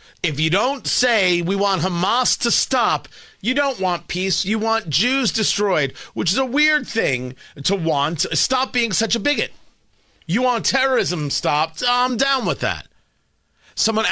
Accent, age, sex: American, 40-59, male